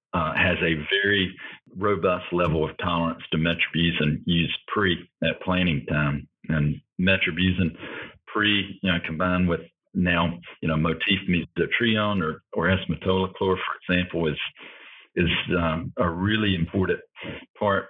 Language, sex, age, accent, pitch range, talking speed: English, male, 50-69, American, 85-95 Hz, 130 wpm